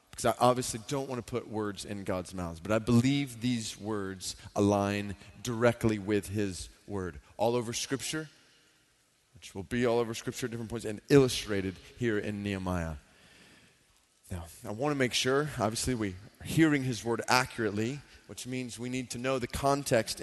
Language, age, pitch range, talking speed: English, 30-49, 100-125 Hz, 175 wpm